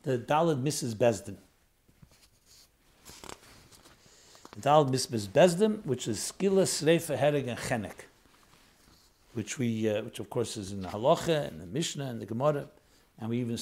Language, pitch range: English, 125-175 Hz